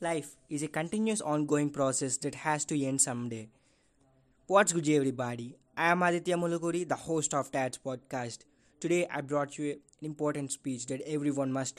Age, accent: 20-39, Indian